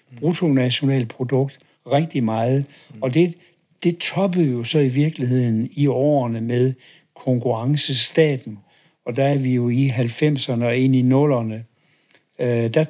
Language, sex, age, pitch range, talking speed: Danish, male, 60-79, 125-165 Hz, 130 wpm